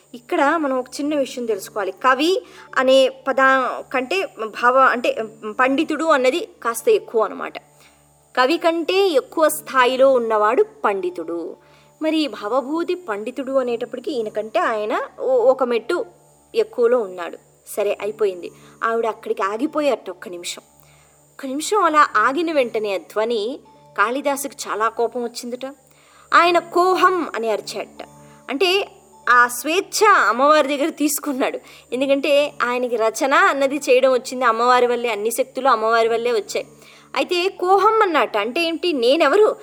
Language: Telugu